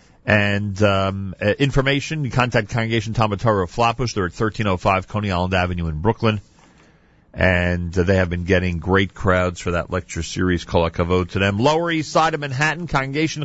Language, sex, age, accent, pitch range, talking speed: English, male, 40-59, American, 100-140 Hz, 170 wpm